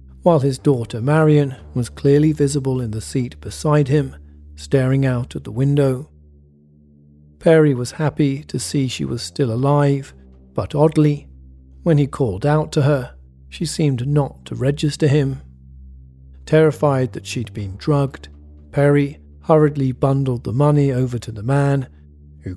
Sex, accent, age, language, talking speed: male, British, 40-59, English, 145 wpm